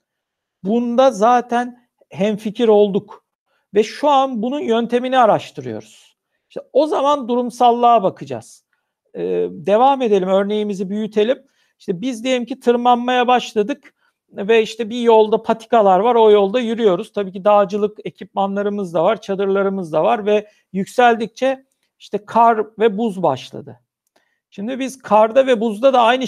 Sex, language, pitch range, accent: male, Turkish, 210-250 Hz, native